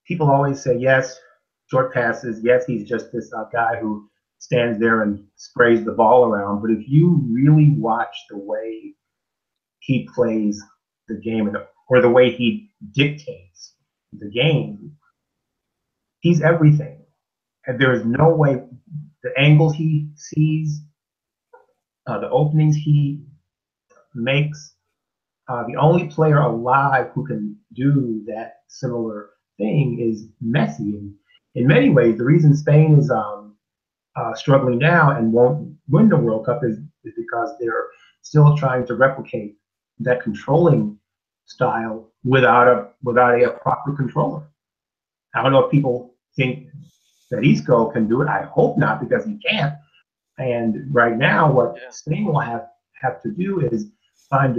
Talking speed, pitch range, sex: 145 wpm, 115-150 Hz, male